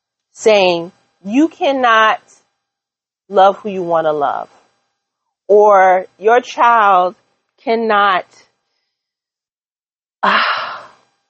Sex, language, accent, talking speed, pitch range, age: female, English, American, 75 wpm, 190-250 Hz, 40-59